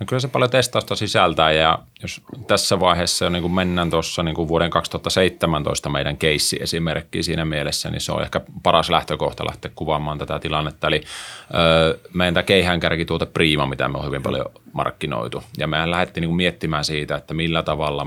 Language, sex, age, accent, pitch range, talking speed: Finnish, male, 30-49, native, 75-85 Hz, 180 wpm